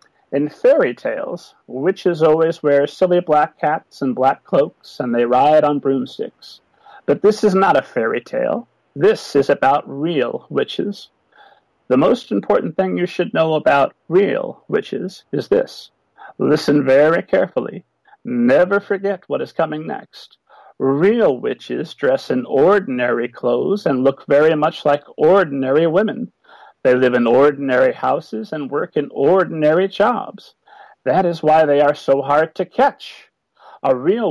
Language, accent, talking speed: English, American, 145 wpm